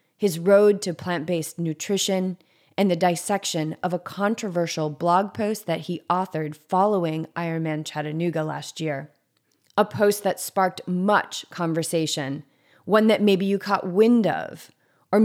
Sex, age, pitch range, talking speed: female, 30-49, 160-200 Hz, 140 wpm